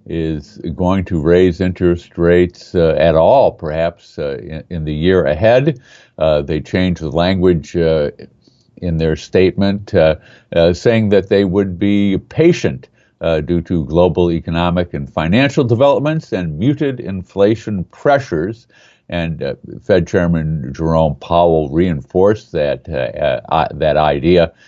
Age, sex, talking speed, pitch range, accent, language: 50-69, male, 140 wpm, 80-100 Hz, American, English